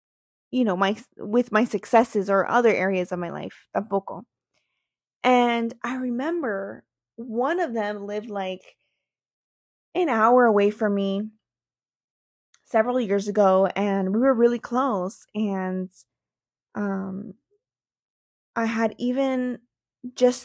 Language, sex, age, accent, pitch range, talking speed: English, female, 20-39, American, 200-250 Hz, 120 wpm